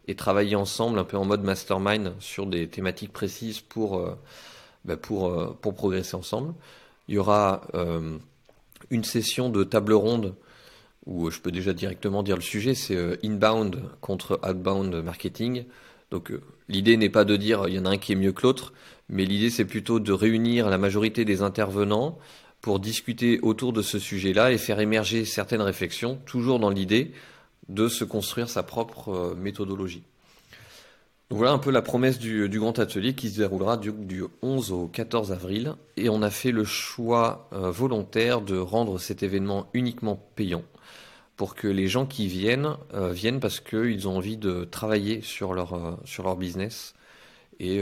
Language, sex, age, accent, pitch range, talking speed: French, male, 30-49, French, 95-115 Hz, 175 wpm